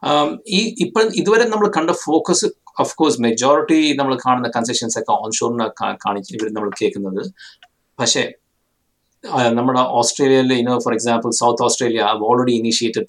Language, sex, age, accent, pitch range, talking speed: Malayalam, male, 50-69, native, 110-135 Hz, 120 wpm